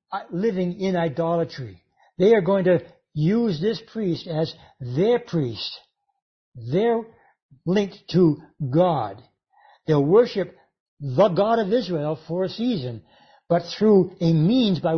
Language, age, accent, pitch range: English, 60-79, American, 160-205 Hz